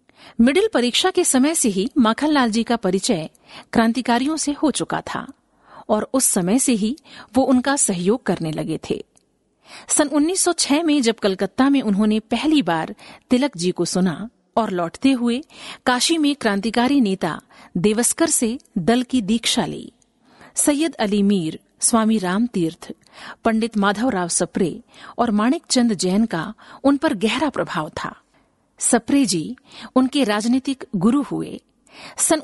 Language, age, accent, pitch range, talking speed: Hindi, 50-69, native, 205-275 Hz, 140 wpm